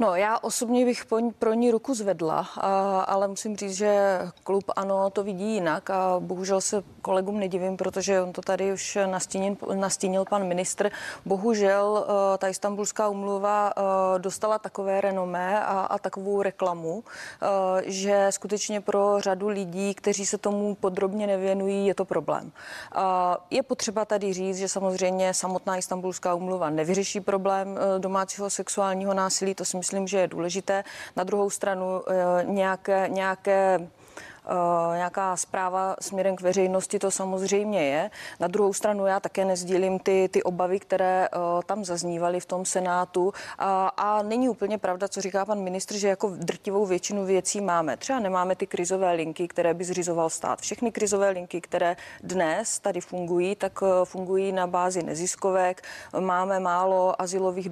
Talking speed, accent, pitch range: 150 wpm, native, 185-200 Hz